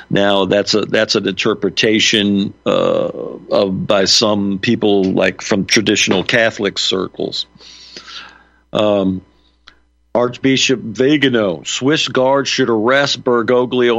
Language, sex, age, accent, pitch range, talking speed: English, male, 50-69, American, 105-130 Hz, 105 wpm